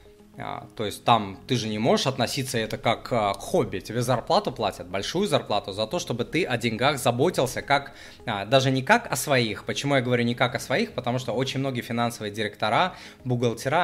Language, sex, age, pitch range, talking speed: Russian, male, 20-39, 110-140 Hz, 190 wpm